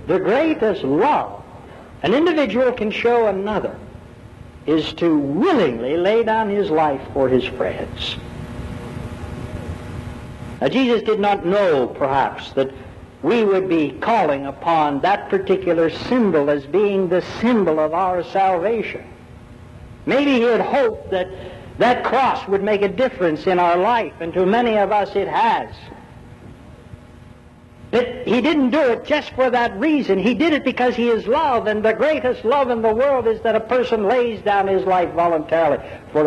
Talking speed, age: 155 wpm, 60-79